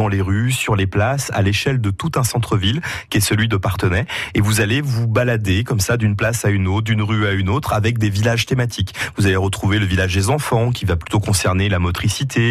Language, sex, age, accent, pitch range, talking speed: French, male, 30-49, French, 100-120 Hz, 245 wpm